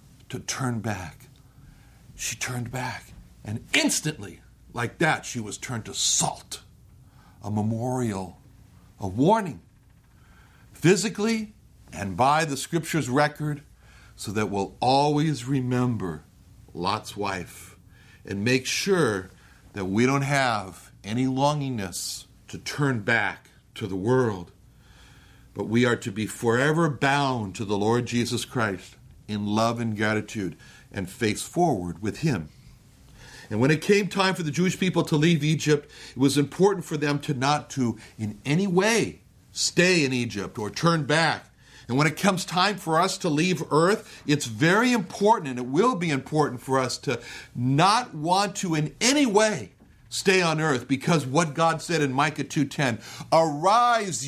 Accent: American